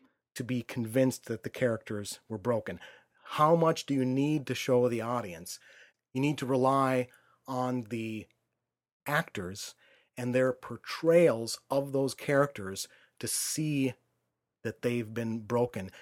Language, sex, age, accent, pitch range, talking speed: English, male, 30-49, American, 115-135 Hz, 135 wpm